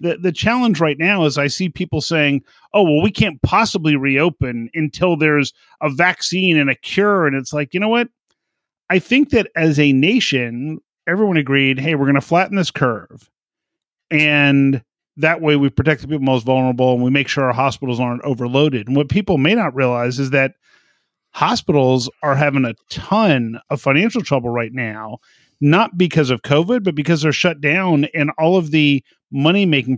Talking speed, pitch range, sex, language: 185 wpm, 135-180 Hz, male, English